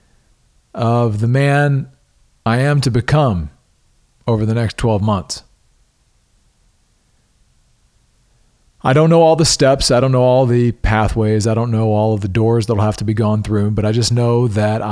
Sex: male